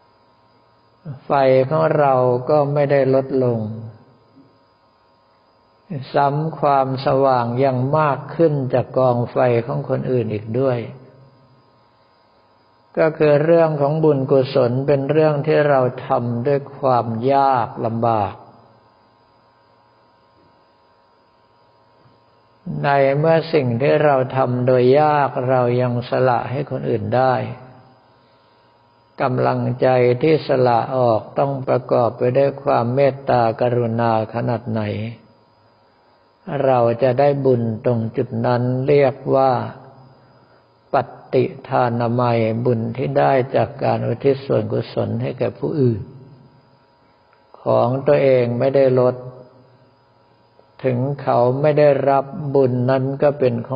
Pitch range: 110-135 Hz